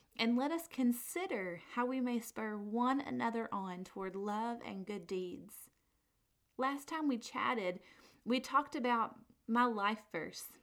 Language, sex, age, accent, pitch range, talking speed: English, female, 30-49, American, 205-260 Hz, 145 wpm